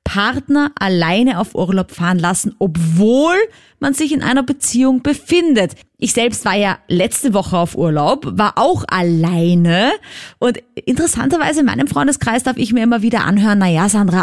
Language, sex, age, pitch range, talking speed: German, female, 20-39, 185-265 Hz, 155 wpm